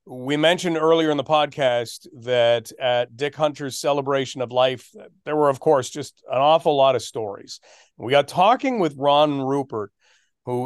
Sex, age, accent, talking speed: male, 40-59, American, 170 wpm